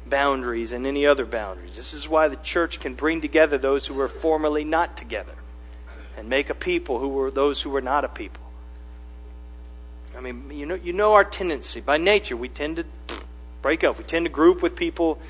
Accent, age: American, 40-59